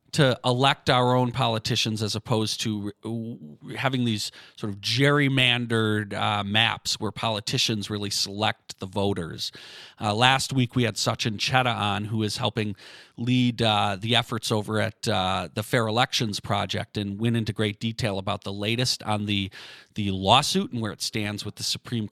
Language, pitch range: English, 110-135 Hz